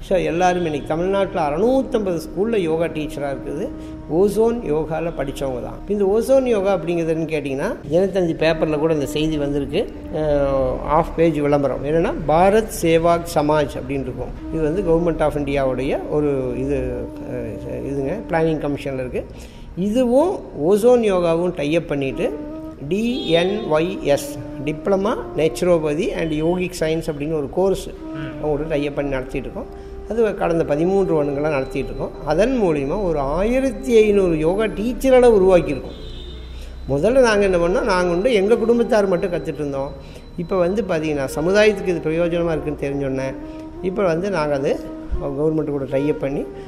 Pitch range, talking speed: 145-195 Hz, 130 wpm